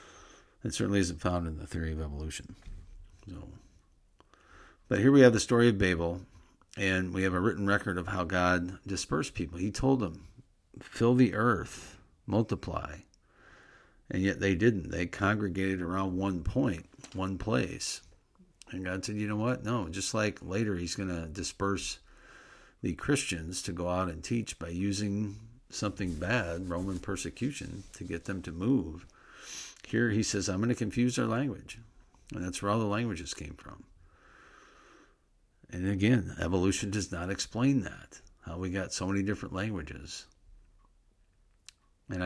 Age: 50-69